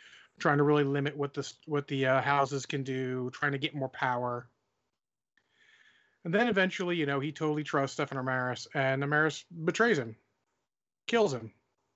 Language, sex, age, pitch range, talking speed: English, male, 30-49, 130-150 Hz, 165 wpm